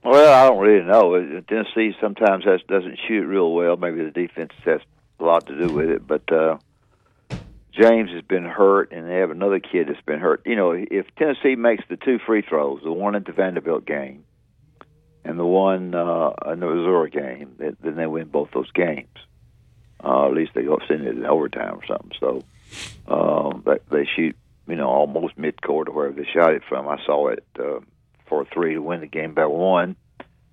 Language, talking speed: English, 200 wpm